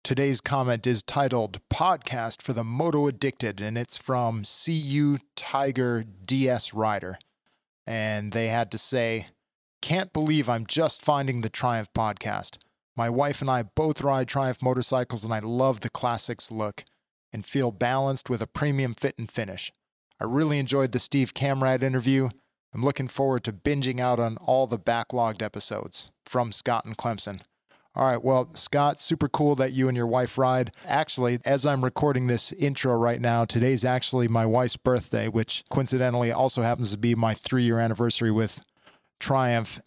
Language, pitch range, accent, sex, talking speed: English, 115-135 Hz, American, male, 165 wpm